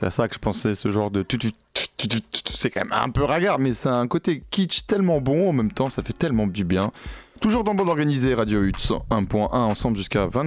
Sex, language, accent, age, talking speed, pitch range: male, French, French, 20-39, 230 wpm, 105-130 Hz